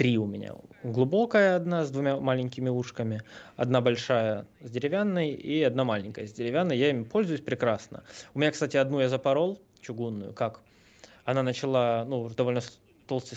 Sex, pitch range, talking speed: male, 120-155 Hz, 155 wpm